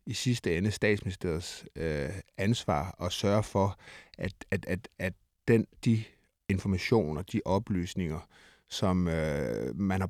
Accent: native